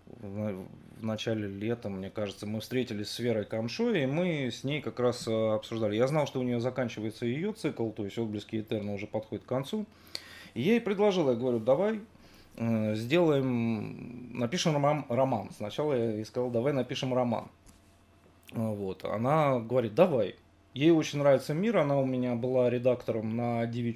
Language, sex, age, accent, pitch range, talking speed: Russian, male, 20-39, native, 110-135 Hz, 165 wpm